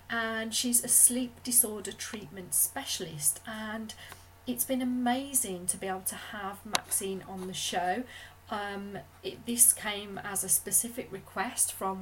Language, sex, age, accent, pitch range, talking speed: English, female, 40-59, British, 185-220 Hz, 140 wpm